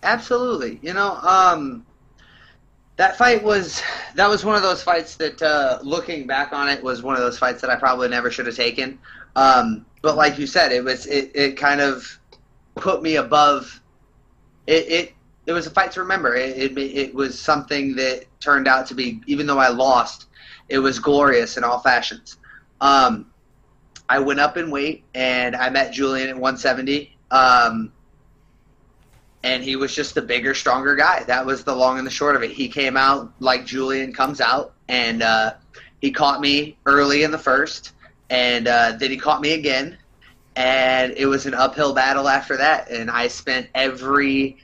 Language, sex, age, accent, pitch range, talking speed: English, male, 30-49, American, 125-145 Hz, 185 wpm